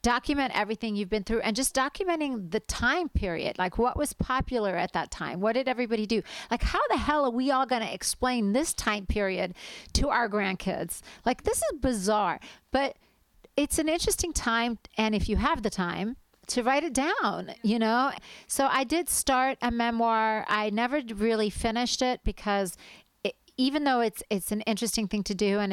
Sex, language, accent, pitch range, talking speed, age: female, English, American, 185-245 Hz, 190 wpm, 40-59